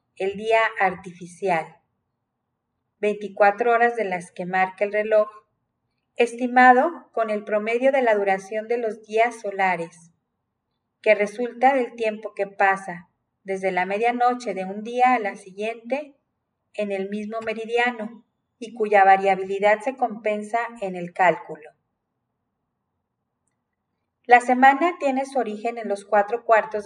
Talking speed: 130 wpm